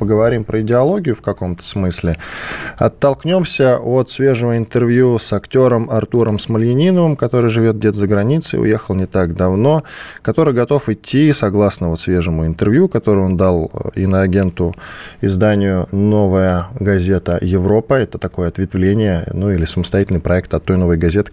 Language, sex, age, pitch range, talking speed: Russian, male, 20-39, 95-125 Hz, 140 wpm